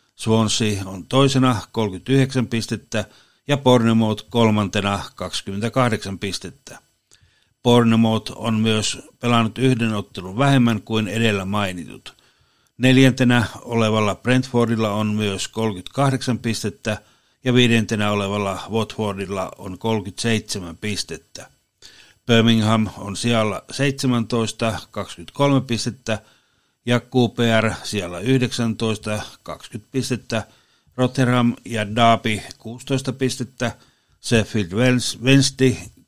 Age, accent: 60-79, native